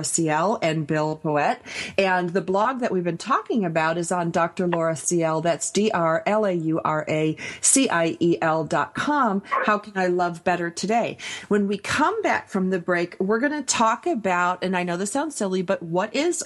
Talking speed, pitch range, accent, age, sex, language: 170 wpm, 170-205 Hz, American, 40-59, female, English